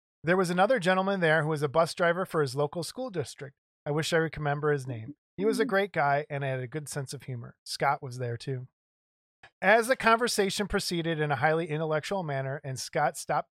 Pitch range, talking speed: 135-170 Hz, 220 wpm